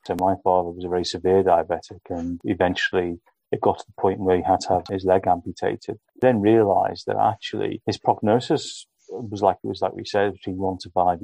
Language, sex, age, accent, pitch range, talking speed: English, male, 30-49, British, 95-100 Hz, 215 wpm